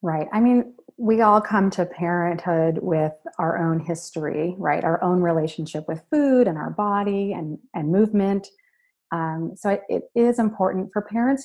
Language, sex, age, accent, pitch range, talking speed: English, female, 30-49, American, 165-215 Hz, 170 wpm